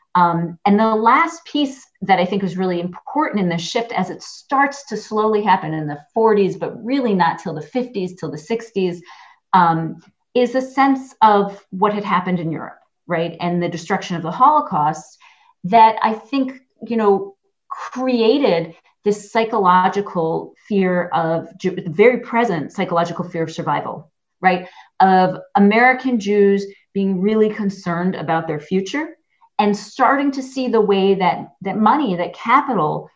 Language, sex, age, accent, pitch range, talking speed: English, female, 40-59, American, 175-230 Hz, 155 wpm